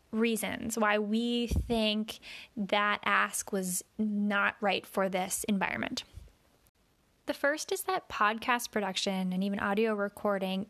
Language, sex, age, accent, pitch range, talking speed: English, female, 10-29, American, 200-230 Hz, 125 wpm